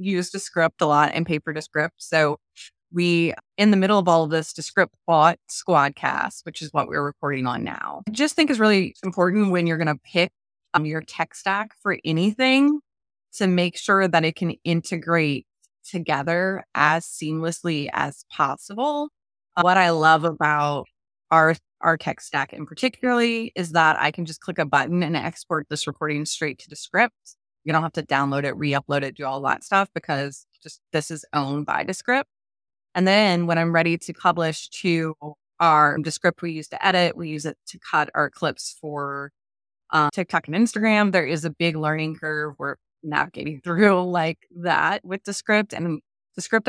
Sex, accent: female, American